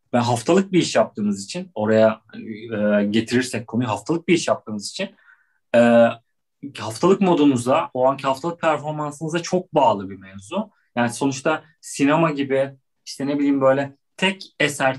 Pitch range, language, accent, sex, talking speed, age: 125-160 Hz, Turkish, native, male, 145 wpm, 40-59